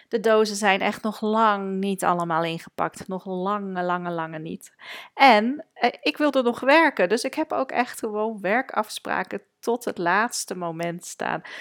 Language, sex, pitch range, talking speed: Dutch, female, 170-215 Hz, 165 wpm